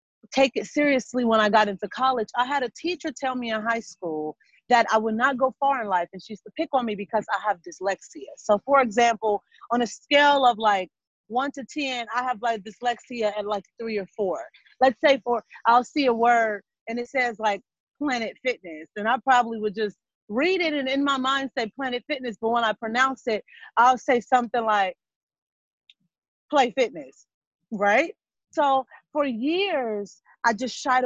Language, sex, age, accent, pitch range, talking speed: English, female, 30-49, American, 210-265 Hz, 195 wpm